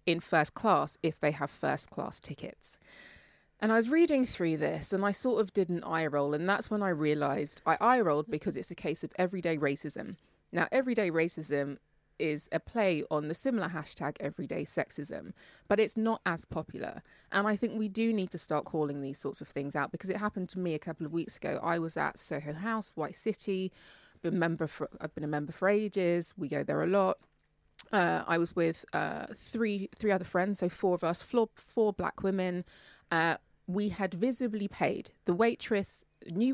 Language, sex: English, female